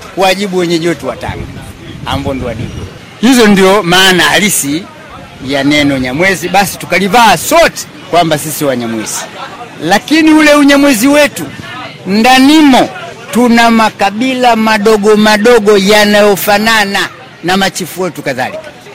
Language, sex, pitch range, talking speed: Swahili, male, 155-225 Hz, 100 wpm